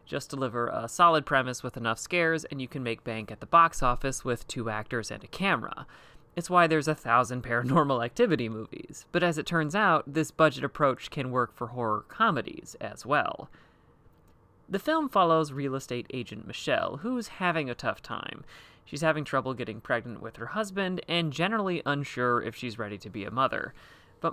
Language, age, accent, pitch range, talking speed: English, 30-49, American, 120-160 Hz, 190 wpm